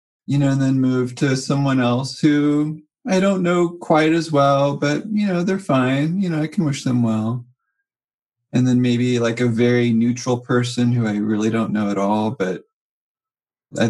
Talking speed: 190 wpm